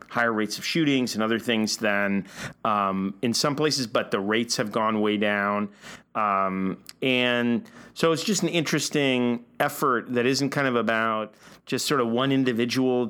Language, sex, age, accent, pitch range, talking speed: English, male, 40-59, American, 110-135 Hz, 170 wpm